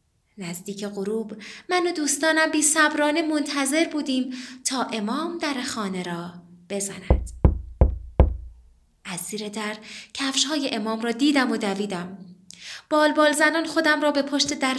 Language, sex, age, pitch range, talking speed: Persian, female, 20-39, 200-285 Hz, 135 wpm